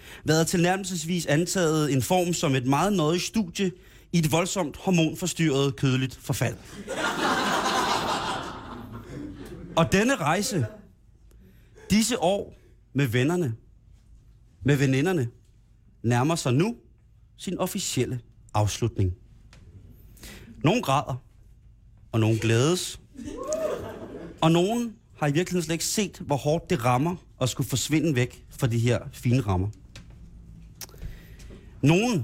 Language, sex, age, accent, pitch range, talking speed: Danish, male, 30-49, native, 110-160 Hz, 105 wpm